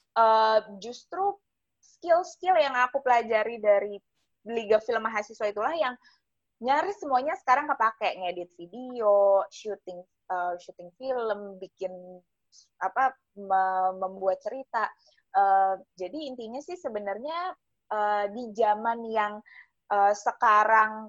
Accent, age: native, 20-39